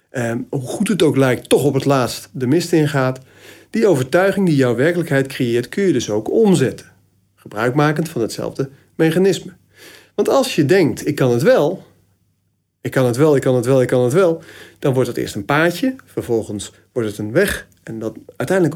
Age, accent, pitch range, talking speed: 40-59, Dutch, 110-170 Hz, 200 wpm